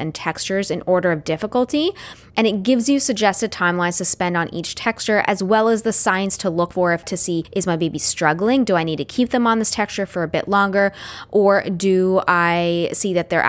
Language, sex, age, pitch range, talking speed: English, female, 20-39, 175-215 Hz, 225 wpm